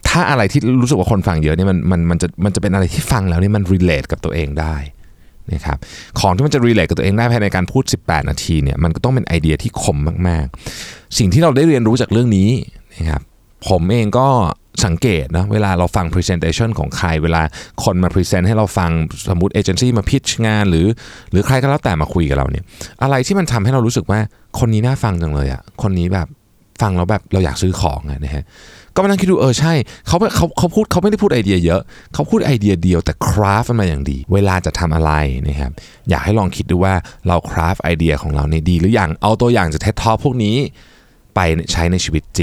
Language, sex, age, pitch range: Thai, male, 20-39, 80-115 Hz